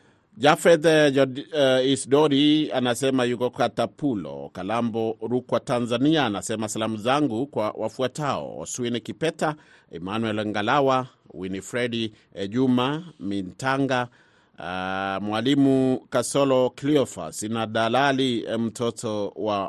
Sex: male